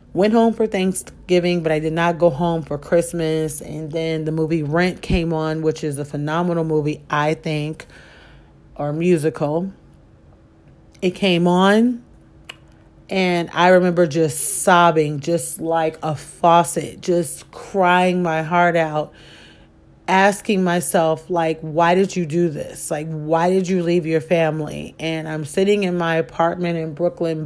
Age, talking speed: 40-59, 150 wpm